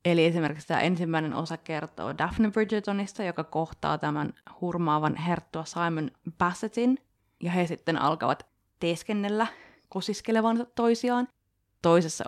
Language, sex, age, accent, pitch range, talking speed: Finnish, female, 20-39, native, 155-200 Hz, 110 wpm